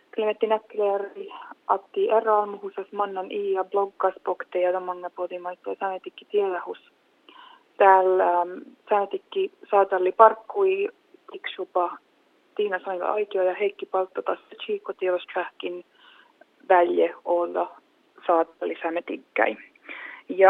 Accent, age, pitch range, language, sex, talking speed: native, 20-39, 175-265 Hz, Finnish, female, 90 wpm